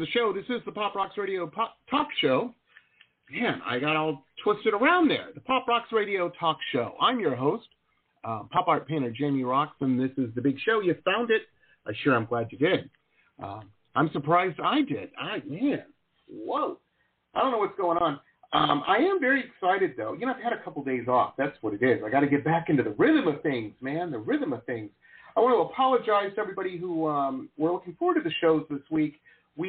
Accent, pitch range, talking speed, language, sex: American, 140-225 Hz, 225 wpm, English, male